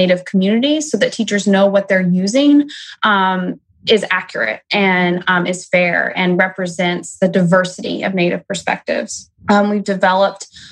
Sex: female